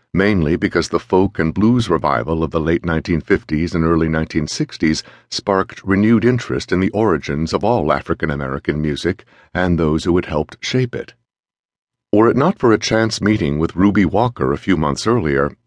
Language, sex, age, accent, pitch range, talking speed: English, male, 60-79, American, 75-100 Hz, 170 wpm